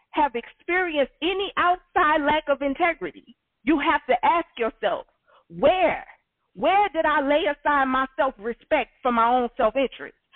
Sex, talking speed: female, 140 wpm